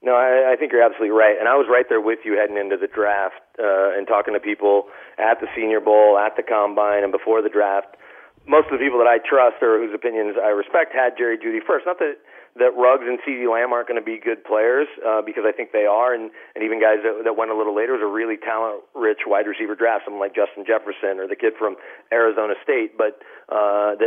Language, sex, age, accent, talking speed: English, male, 40-59, American, 245 wpm